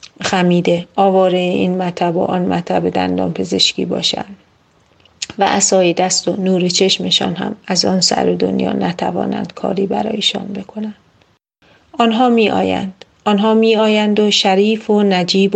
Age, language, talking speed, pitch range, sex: 40-59, Persian, 130 wpm, 180-205 Hz, female